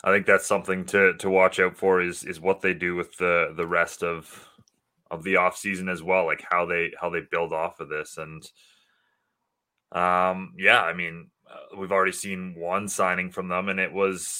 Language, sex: English, male